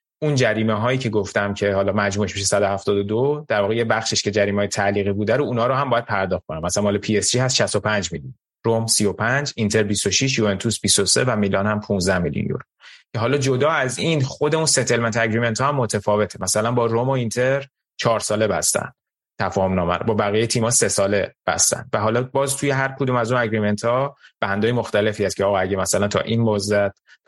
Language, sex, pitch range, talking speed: Persian, male, 100-120 Hz, 210 wpm